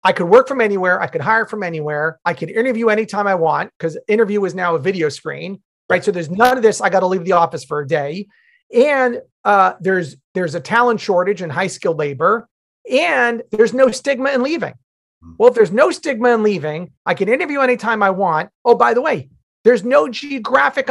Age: 30-49